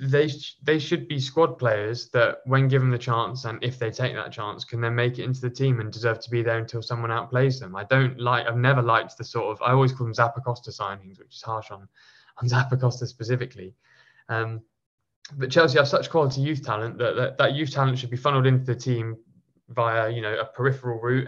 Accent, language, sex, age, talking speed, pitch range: British, English, male, 20-39, 225 wpm, 115-130 Hz